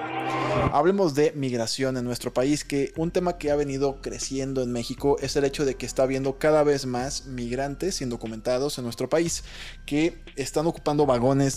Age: 20-39